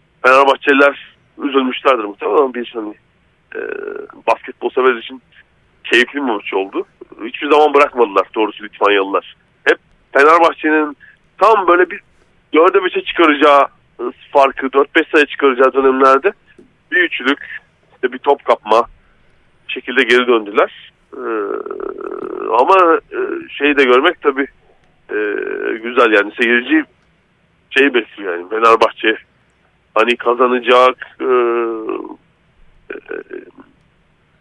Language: Turkish